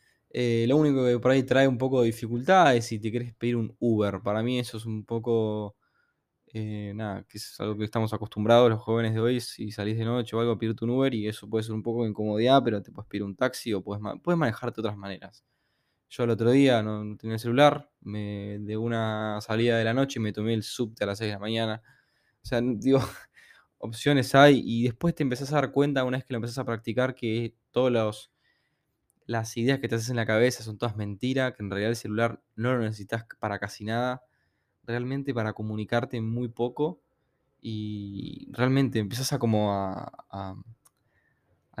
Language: Spanish